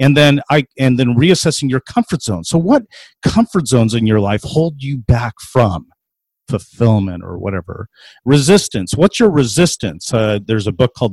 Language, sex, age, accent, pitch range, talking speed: English, male, 40-59, American, 110-150 Hz, 175 wpm